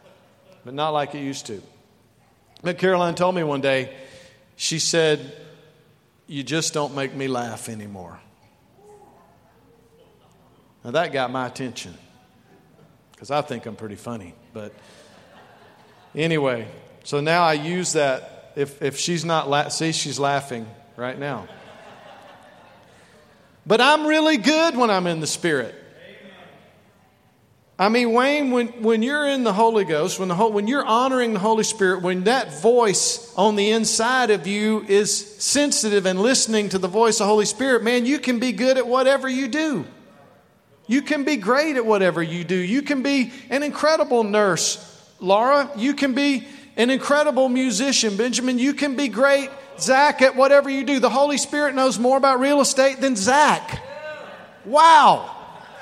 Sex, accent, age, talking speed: male, American, 50-69, 155 wpm